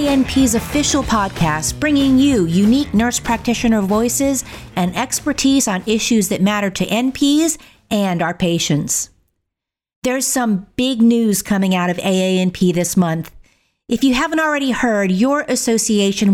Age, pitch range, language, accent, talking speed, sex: 50-69, 195-245 Hz, English, American, 135 wpm, female